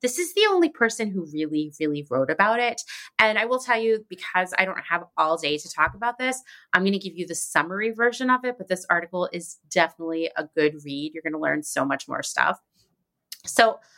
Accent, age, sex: American, 30-49, female